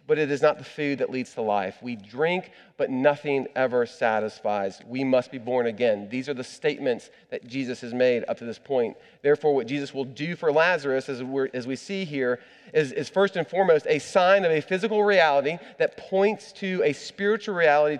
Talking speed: 205 wpm